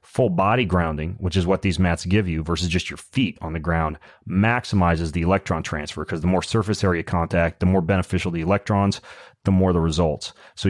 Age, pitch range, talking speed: 30-49, 85-105 Hz, 210 wpm